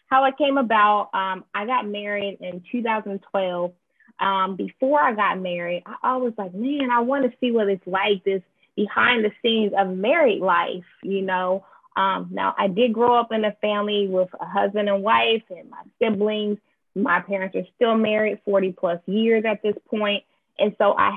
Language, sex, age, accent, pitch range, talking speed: English, female, 20-39, American, 195-235 Hz, 190 wpm